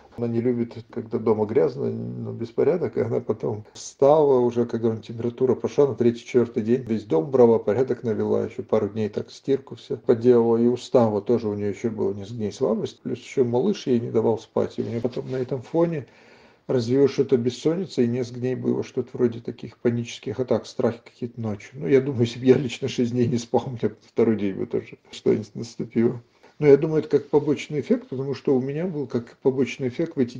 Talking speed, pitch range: 205 wpm, 115-135 Hz